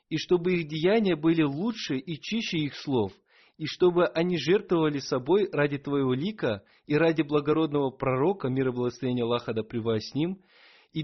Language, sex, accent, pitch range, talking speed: Russian, male, native, 140-180 Hz, 160 wpm